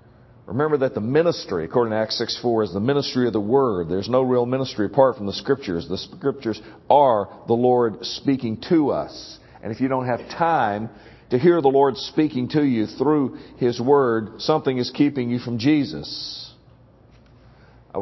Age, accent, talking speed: 50-69, American, 180 wpm